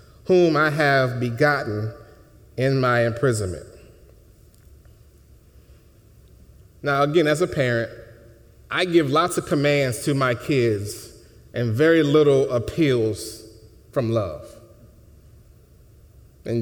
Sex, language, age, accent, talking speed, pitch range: male, English, 30-49, American, 100 wpm, 110-155 Hz